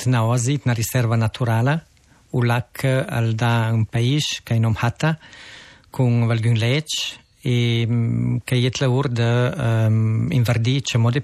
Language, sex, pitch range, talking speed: Italian, male, 115-130 Hz, 115 wpm